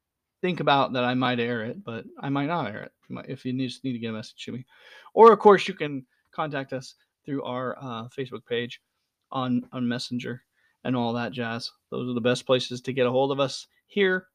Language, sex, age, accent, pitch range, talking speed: English, male, 40-59, American, 125-165 Hz, 220 wpm